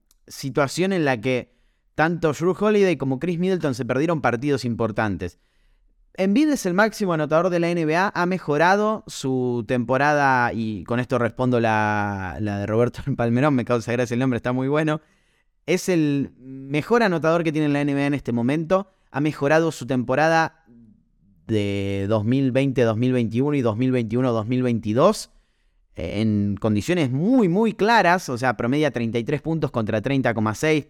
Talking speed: 145 wpm